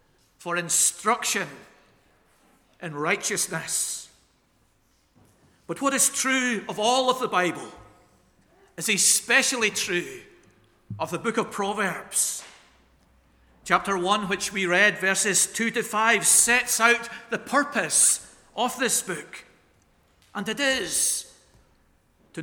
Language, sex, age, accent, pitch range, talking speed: English, male, 50-69, British, 180-230 Hz, 110 wpm